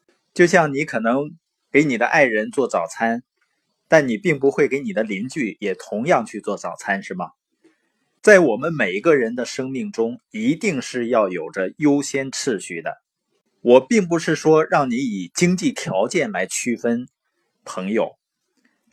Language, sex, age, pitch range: Chinese, male, 20-39, 120-185 Hz